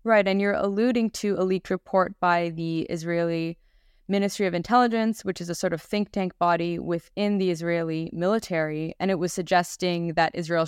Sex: female